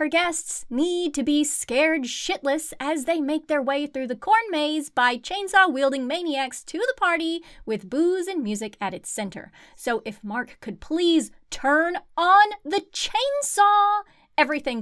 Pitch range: 215-340 Hz